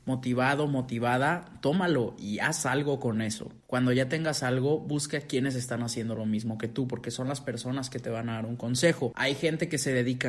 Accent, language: Mexican, Spanish